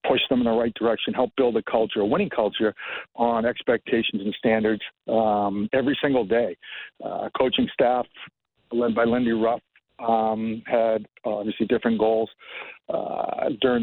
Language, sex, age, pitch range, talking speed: English, male, 50-69, 110-130 Hz, 150 wpm